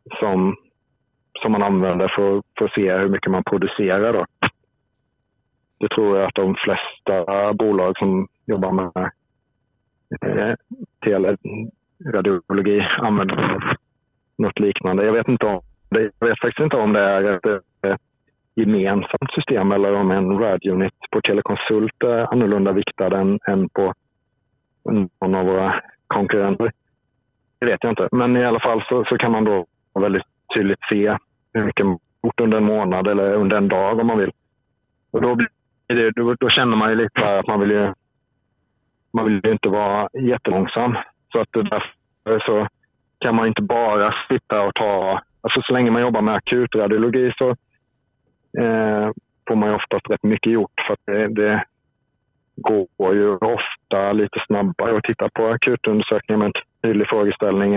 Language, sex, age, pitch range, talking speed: Swedish, male, 30-49, 100-115 Hz, 160 wpm